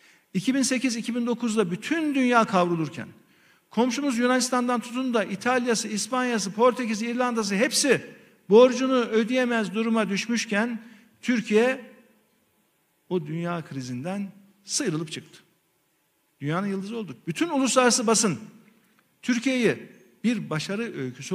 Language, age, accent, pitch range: Turkish, 50-69, native, 175-230 Hz